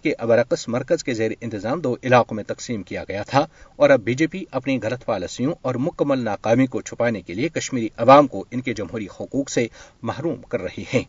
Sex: male